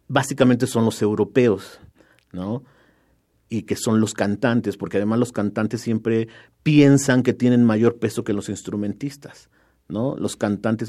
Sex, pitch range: male, 115-145 Hz